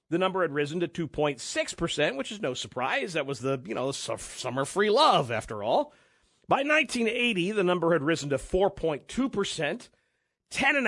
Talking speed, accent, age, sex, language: 165 wpm, American, 50-69, male, English